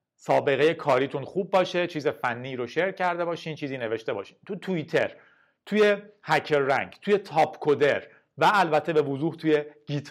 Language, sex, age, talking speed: Persian, male, 40-59, 160 wpm